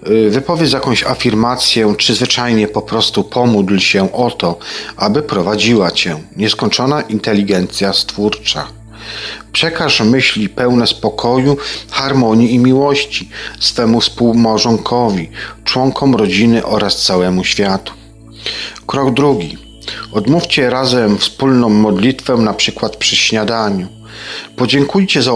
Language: Polish